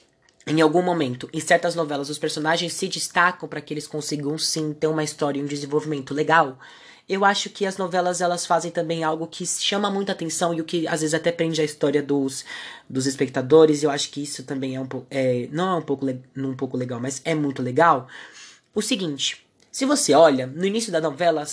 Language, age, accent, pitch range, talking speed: Portuguese, 20-39, Brazilian, 145-185 Hz, 210 wpm